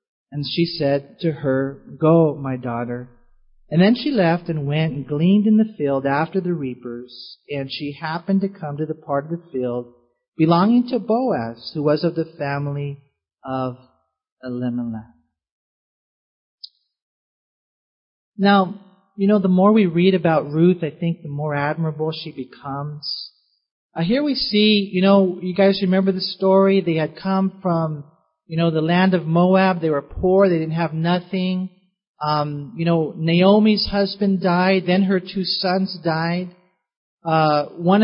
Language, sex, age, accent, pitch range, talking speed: English, male, 40-59, American, 145-185 Hz, 160 wpm